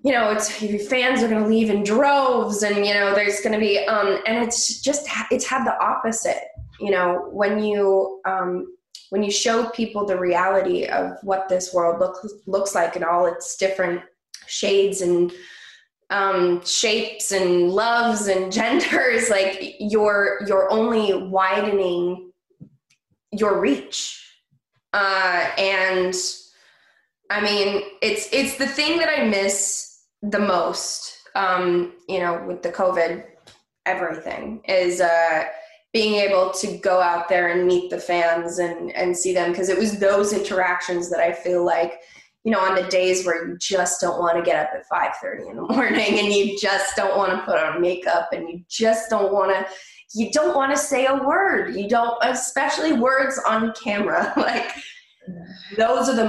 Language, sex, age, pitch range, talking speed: English, female, 20-39, 180-220 Hz, 170 wpm